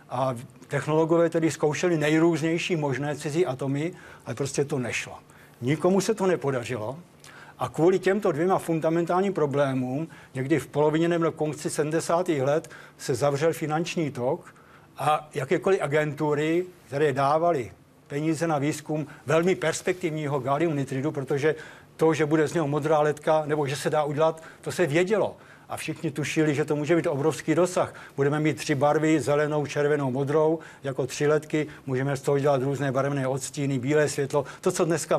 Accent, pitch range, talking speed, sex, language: native, 145-170 Hz, 155 wpm, male, Czech